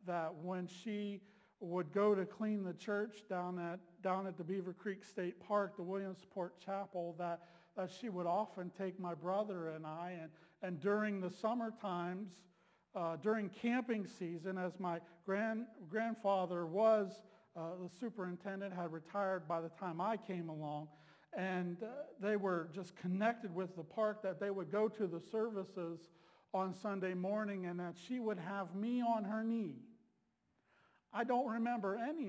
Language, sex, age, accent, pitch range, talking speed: English, male, 50-69, American, 180-230 Hz, 165 wpm